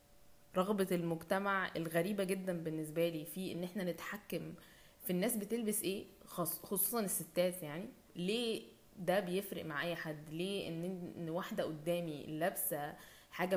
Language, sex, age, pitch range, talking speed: English, female, 20-39, 170-200 Hz, 125 wpm